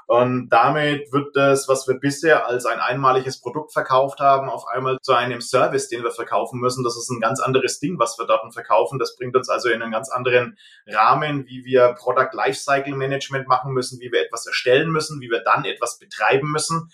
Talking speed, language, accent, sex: 210 wpm, German, German, male